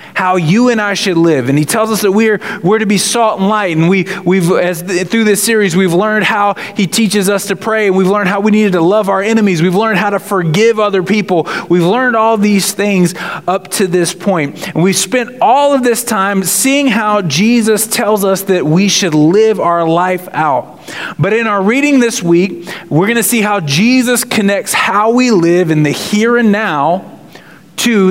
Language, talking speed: English, 215 wpm